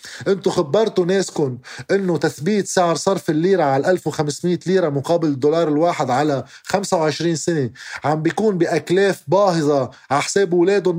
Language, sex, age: Arabic, male, 20-39